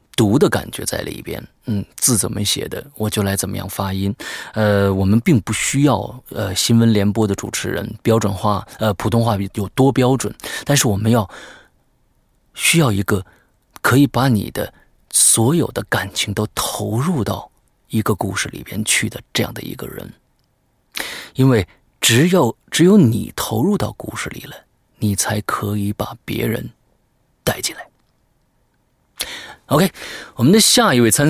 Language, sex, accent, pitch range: Chinese, male, native, 100-135 Hz